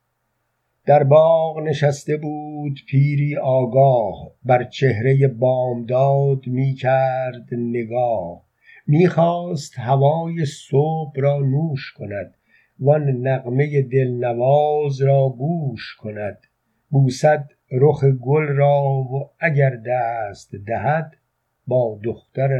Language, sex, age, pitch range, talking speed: Persian, male, 50-69, 130-150 Hz, 95 wpm